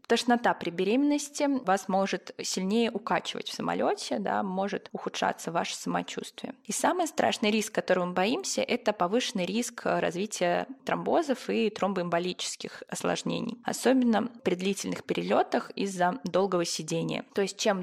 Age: 20-39